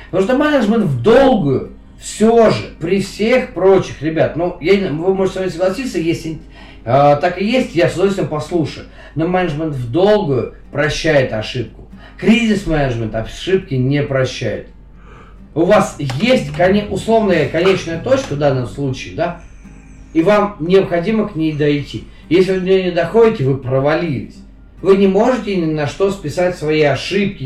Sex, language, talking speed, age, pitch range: male, Russian, 145 wpm, 40-59, 140-195 Hz